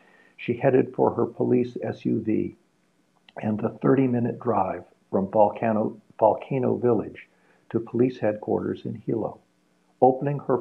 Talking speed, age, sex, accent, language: 120 wpm, 60-79, male, American, English